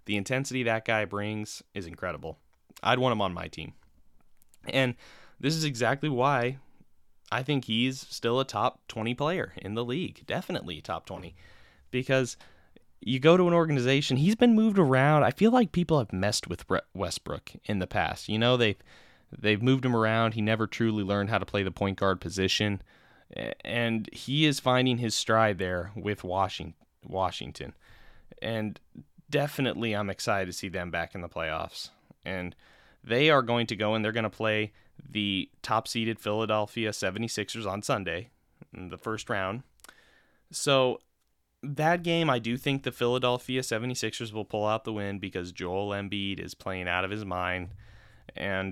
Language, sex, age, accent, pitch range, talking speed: English, male, 10-29, American, 100-130 Hz, 170 wpm